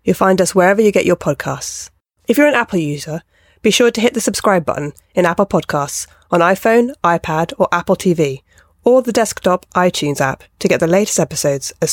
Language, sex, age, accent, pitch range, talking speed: English, female, 20-39, British, 155-210 Hz, 200 wpm